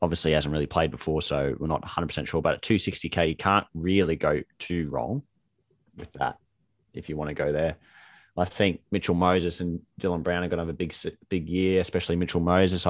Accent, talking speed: Australian, 215 wpm